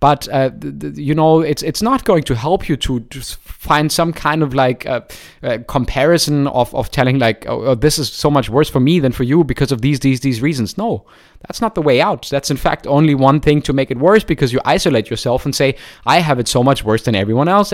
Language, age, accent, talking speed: English, 20-39, German, 255 wpm